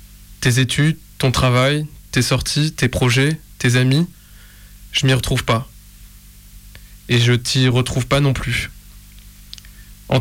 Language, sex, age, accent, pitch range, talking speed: French, male, 20-39, French, 105-135 Hz, 130 wpm